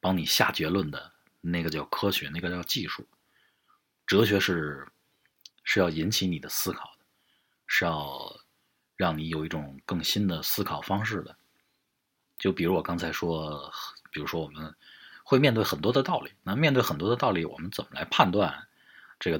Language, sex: Chinese, male